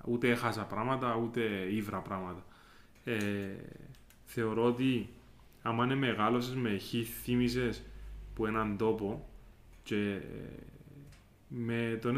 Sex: male